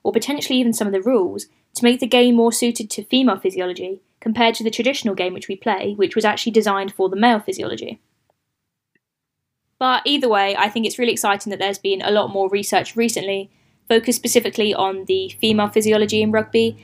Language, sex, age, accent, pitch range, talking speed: English, female, 10-29, British, 195-240 Hz, 200 wpm